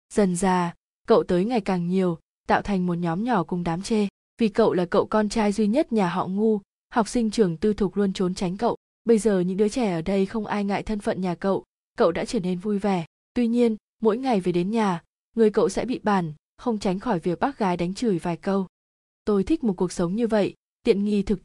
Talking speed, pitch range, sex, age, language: 245 wpm, 185-225 Hz, female, 20-39, Vietnamese